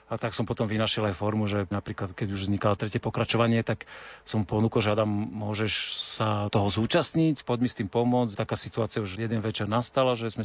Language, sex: Slovak, male